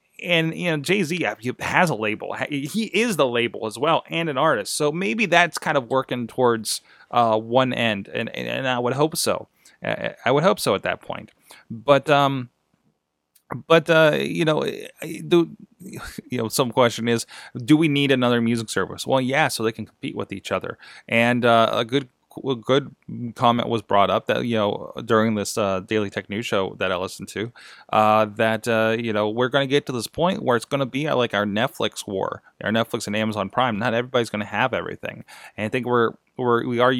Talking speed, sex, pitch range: 210 wpm, male, 115-145 Hz